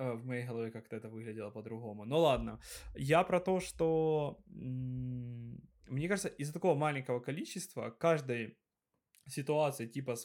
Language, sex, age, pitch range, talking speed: Ukrainian, male, 20-39, 120-150 Hz, 135 wpm